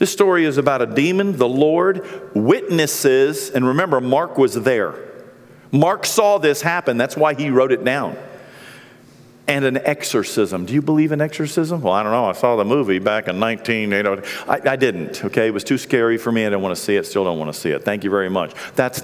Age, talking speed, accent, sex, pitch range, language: 50-69, 220 wpm, American, male, 115-180 Hz, English